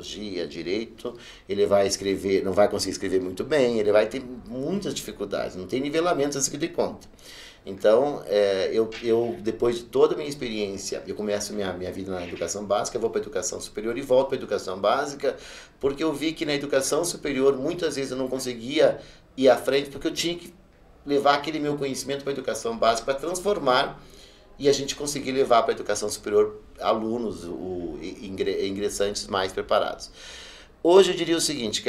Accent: Brazilian